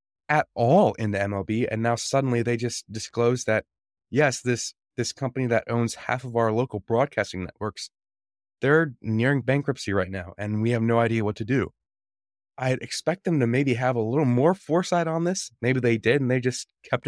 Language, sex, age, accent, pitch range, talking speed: English, male, 20-39, American, 100-125 Hz, 195 wpm